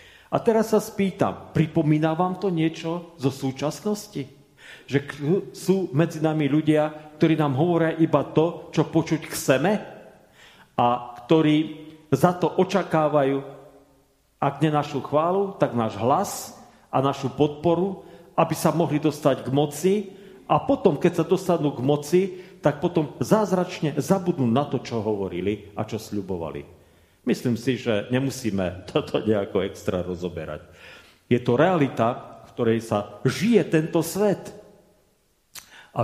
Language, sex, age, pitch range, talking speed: Slovak, male, 40-59, 135-180 Hz, 135 wpm